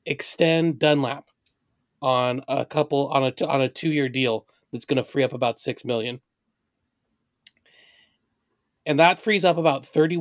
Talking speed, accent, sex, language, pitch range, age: 155 wpm, American, male, English, 135-165 Hz, 30-49